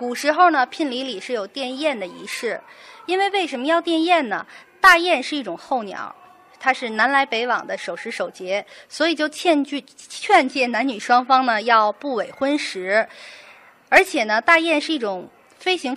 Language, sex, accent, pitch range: Chinese, female, native, 225-310 Hz